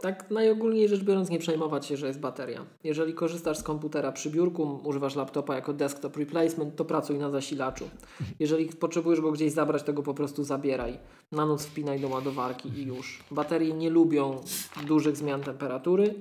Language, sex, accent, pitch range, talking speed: Polish, male, native, 145-165 Hz, 180 wpm